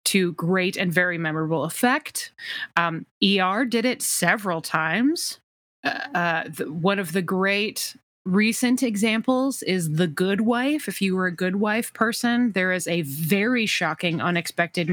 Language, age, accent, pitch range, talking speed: English, 30-49, American, 170-230 Hz, 145 wpm